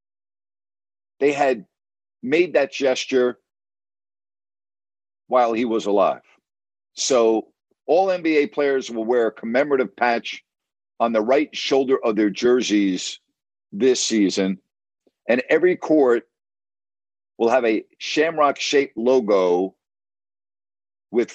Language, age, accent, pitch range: English, 50-69, American, 100-125 Hz